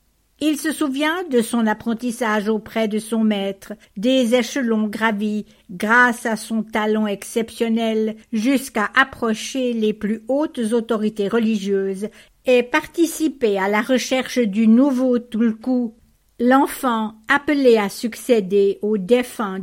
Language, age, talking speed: English, 60-79, 120 wpm